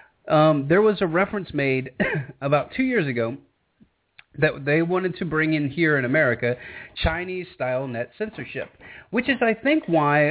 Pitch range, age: 125-160 Hz, 30-49